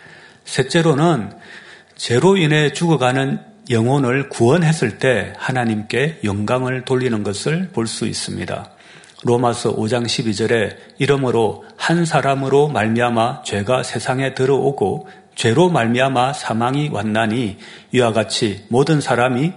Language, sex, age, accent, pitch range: Korean, male, 40-59, native, 115-150 Hz